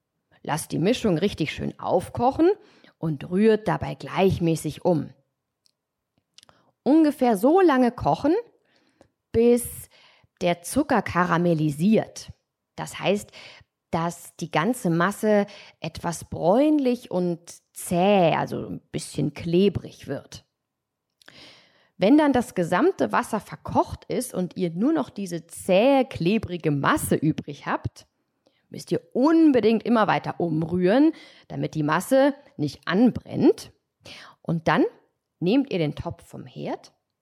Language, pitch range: German, 165-265 Hz